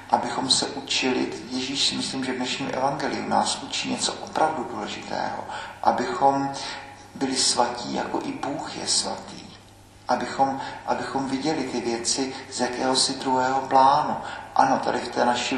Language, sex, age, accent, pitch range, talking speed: Czech, male, 50-69, native, 125-135 Hz, 145 wpm